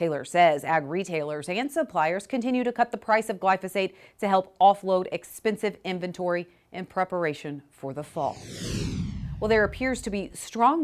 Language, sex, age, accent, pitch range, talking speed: English, female, 40-59, American, 155-200 Hz, 160 wpm